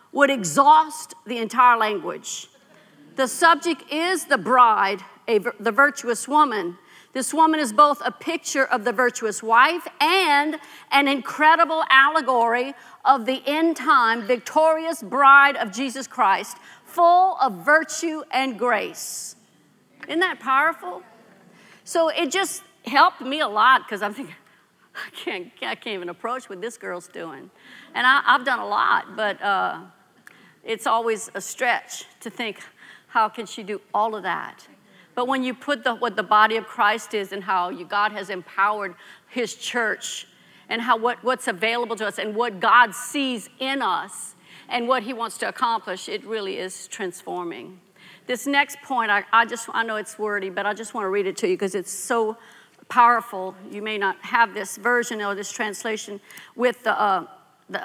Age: 50-69